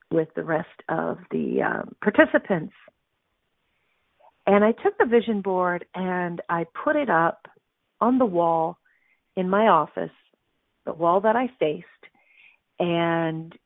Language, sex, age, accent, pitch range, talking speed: English, female, 40-59, American, 170-220 Hz, 130 wpm